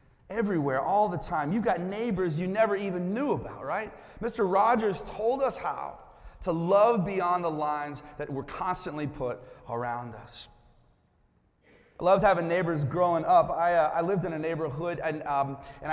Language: English